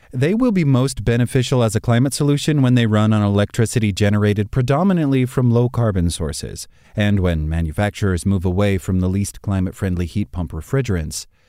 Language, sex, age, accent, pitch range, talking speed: English, male, 30-49, American, 95-130 Hz, 160 wpm